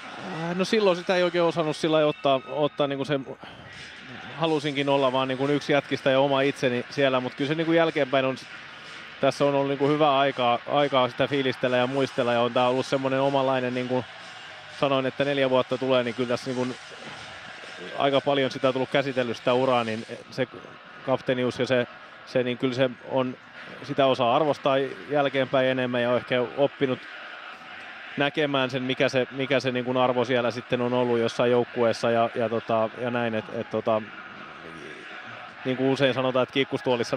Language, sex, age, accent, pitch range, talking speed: Finnish, male, 20-39, native, 125-140 Hz, 170 wpm